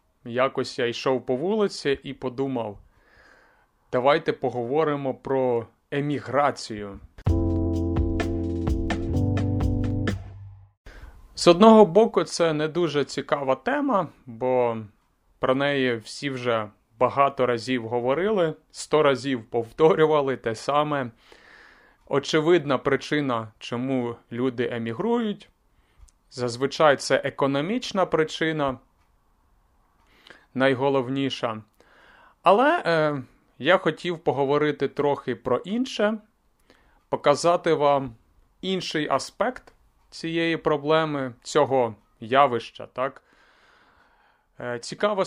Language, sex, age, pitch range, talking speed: Ukrainian, male, 30-49, 115-155 Hz, 80 wpm